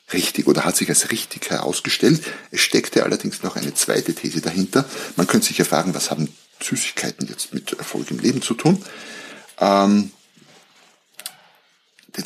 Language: German